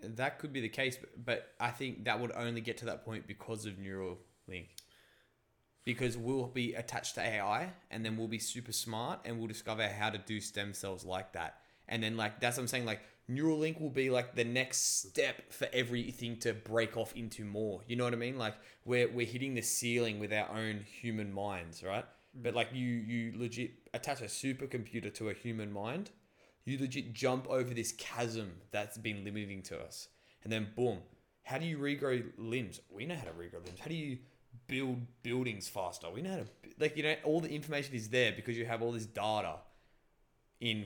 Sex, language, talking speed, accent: male, English, 210 wpm, Australian